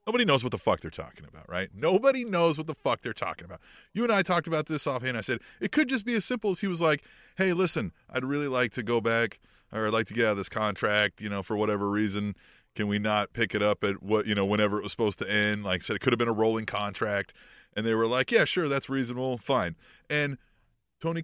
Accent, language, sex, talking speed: American, English, male, 270 wpm